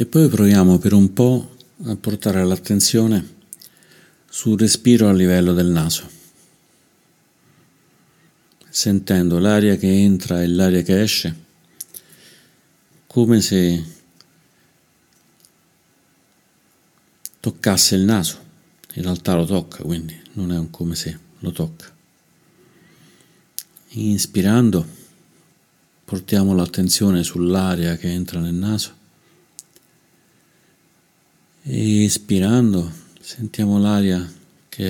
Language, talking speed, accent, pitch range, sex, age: Italian, 90 wpm, native, 90-115 Hz, male, 50-69